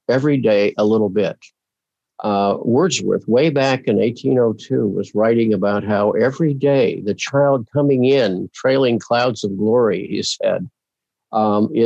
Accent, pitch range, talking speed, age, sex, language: American, 110-135 Hz, 140 wpm, 50-69, male, English